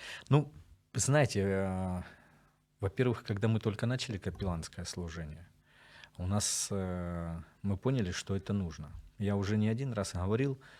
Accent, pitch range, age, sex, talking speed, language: native, 85-105 Hz, 40-59, male, 135 wpm, Ukrainian